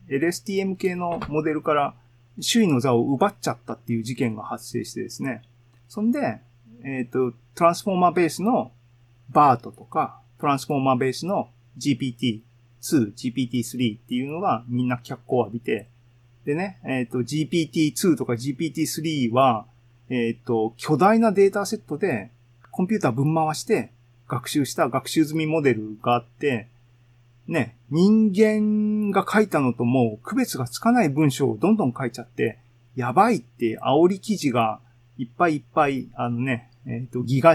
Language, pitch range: Japanese, 120-160 Hz